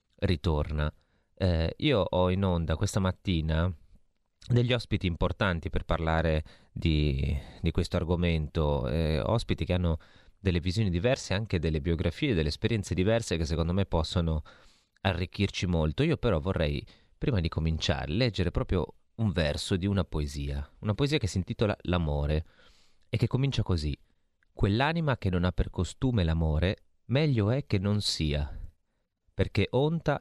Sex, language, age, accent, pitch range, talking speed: male, Italian, 30-49, native, 80-100 Hz, 145 wpm